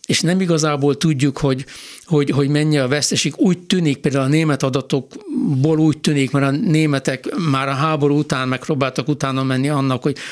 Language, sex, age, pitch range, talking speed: Hungarian, male, 60-79, 135-155 Hz, 175 wpm